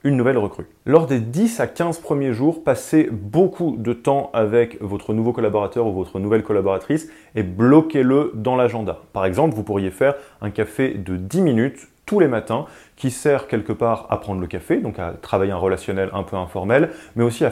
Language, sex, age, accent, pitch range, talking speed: French, male, 30-49, French, 105-135 Hz, 195 wpm